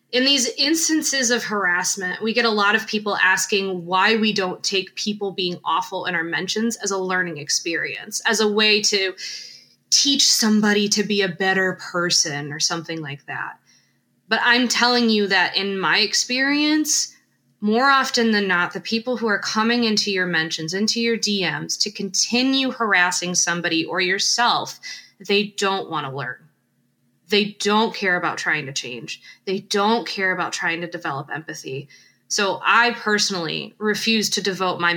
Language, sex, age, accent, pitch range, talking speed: English, female, 20-39, American, 170-220 Hz, 165 wpm